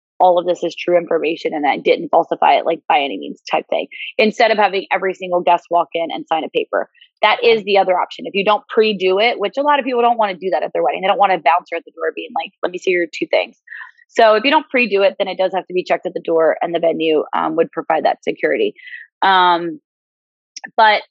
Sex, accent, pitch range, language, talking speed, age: female, American, 175-230 Hz, English, 265 wpm, 20-39